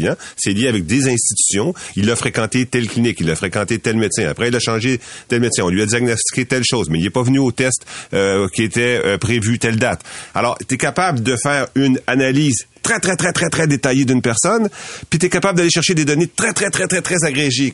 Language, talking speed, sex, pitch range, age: French, 235 wpm, male, 110-140 Hz, 40-59